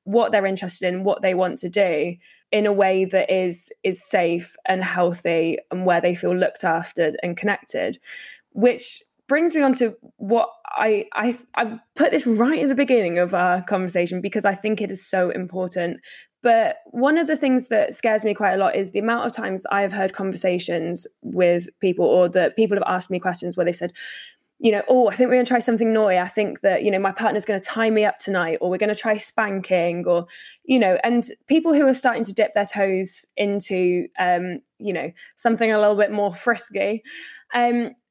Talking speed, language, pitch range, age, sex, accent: 215 wpm, English, 180-235 Hz, 10-29, female, British